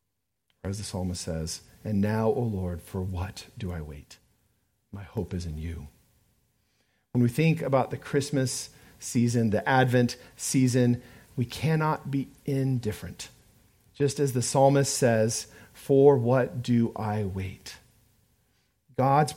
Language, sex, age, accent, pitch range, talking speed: English, male, 40-59, American, 105-135 Hz, 135 wpm